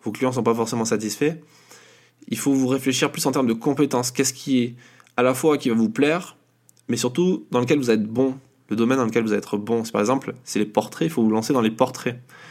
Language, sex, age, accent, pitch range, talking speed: French, male, 20-39, French, 110-140 Hz, 260 wpm